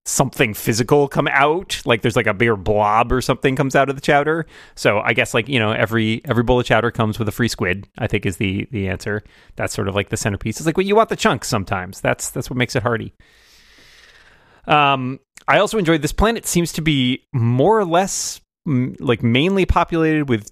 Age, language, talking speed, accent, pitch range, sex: 30-49, English, 225 wpm, American, 105-140 Hz, male